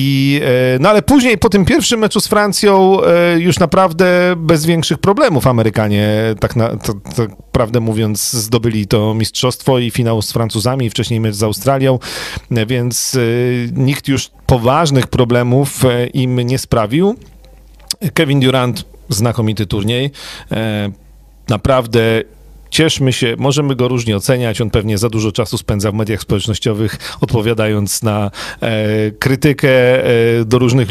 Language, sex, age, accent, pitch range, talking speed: Polish, male, 40-59, native, 110-135 Hz, 120 wpm